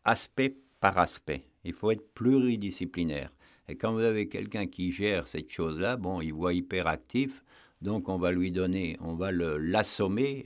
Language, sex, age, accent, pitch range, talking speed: French, male, 60-79, French, 85-110 Hz, 165 wpm